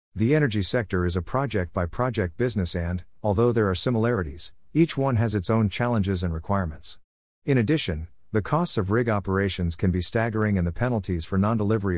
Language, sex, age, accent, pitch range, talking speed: English, male, 50-69, American, 90-115 Hz, 180 wpm